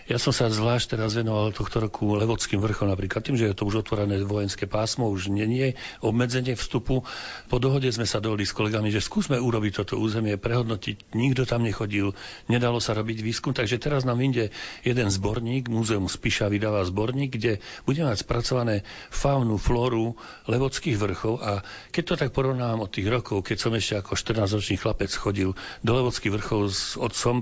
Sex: male